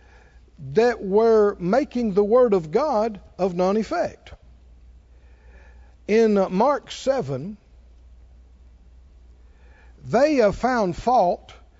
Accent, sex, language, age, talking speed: American, male, English, 60-79, 85 wpm